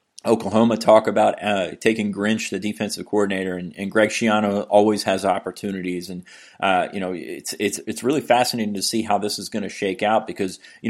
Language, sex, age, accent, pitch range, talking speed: English, male, 30-49, American, 100-115 Hz, 200 wpm